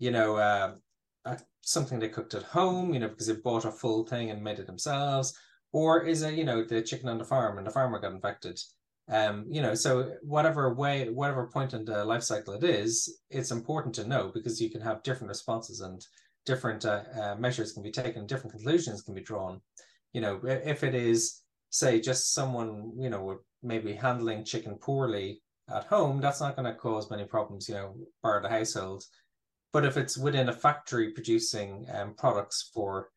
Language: English